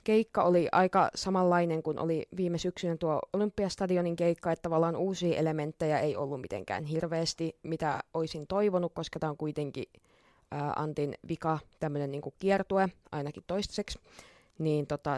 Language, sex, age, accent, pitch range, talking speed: Finnish, female, 20-39, native, 155-195 Hz, 145 wpm